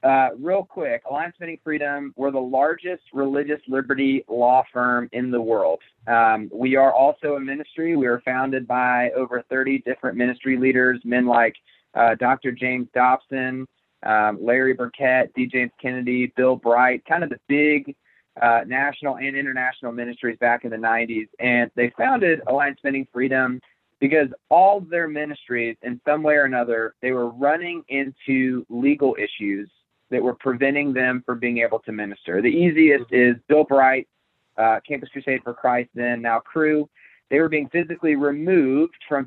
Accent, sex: American, male